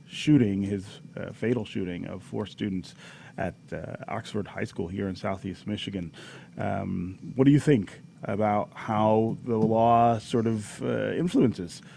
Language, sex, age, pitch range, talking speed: English, male, 30-49, 105-125 Hz, 150 wpm